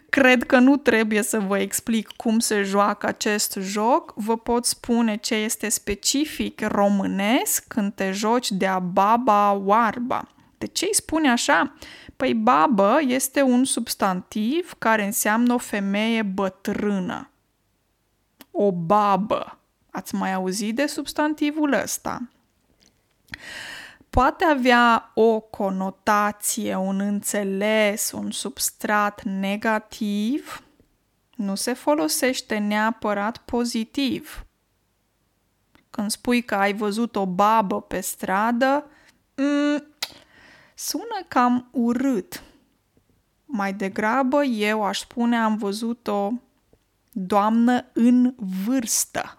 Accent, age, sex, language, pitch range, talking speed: native, 20-39, female, Romanian, 205-260 Hz, 105 wpm